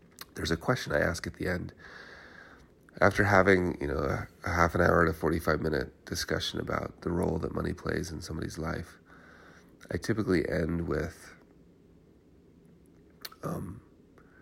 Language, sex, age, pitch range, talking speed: English, male, 30-49, 80-90 Hz, 140 wpm